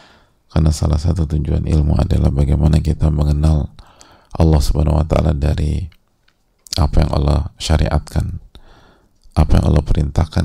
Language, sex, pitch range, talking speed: English, male, 75-90 Hz, 125 wpm